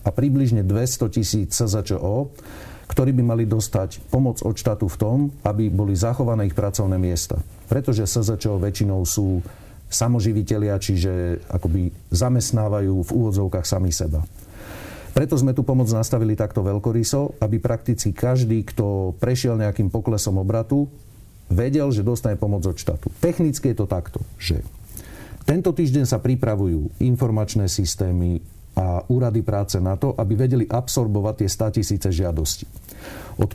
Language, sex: Slovak, male